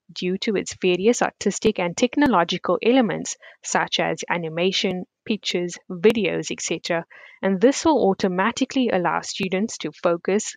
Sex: female